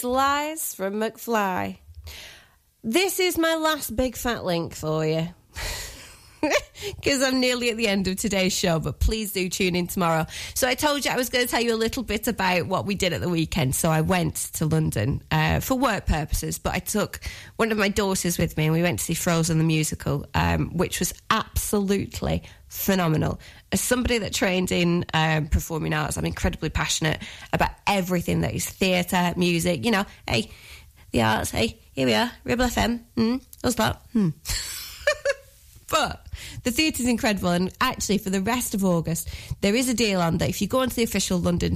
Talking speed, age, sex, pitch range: 195 wpm, 30-49, female, 160-230 Hz